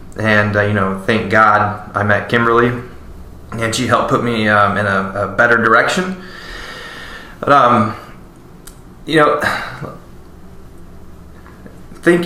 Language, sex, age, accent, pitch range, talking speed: English, male, 20-39, American, 100-120 Hz, 120 wpm